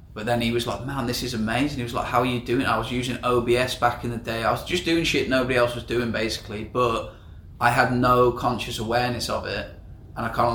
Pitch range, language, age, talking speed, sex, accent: 110-125 Hz, English, 20-39, 260 wpm, male, British